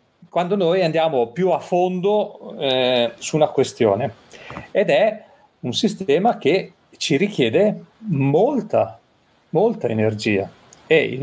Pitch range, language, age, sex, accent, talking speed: 130-205 Hz, Italian, 40-59, male, native, 120 wpm